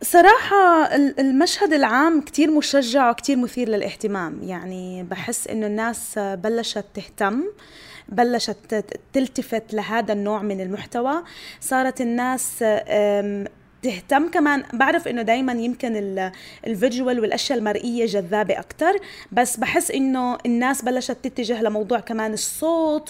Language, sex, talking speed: Arabic, female, 110 wpm